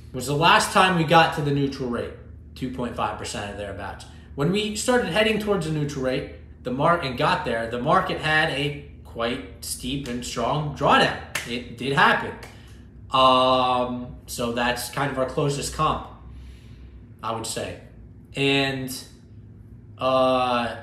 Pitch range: 115-165 Hz